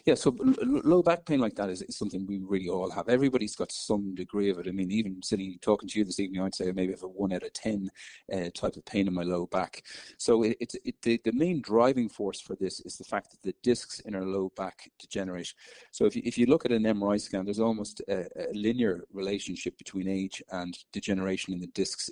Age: 40-59